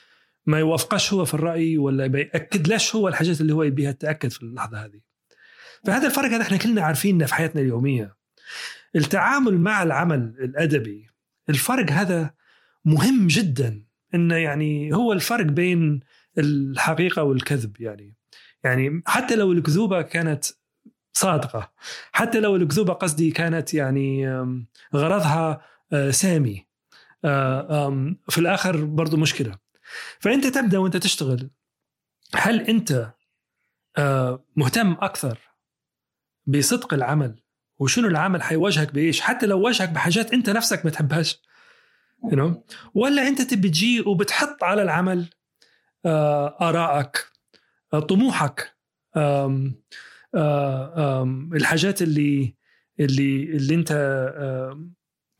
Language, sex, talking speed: Arabic, male, 115 wpm